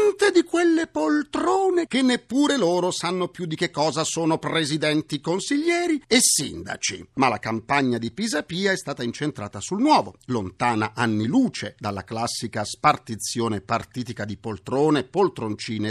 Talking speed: 135 wpm